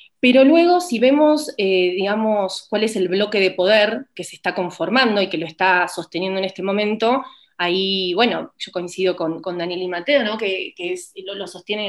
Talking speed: 195 wpm